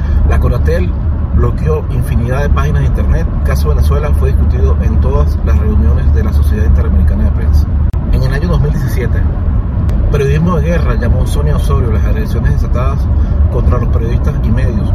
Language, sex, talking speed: Spanish, male, 170 wpm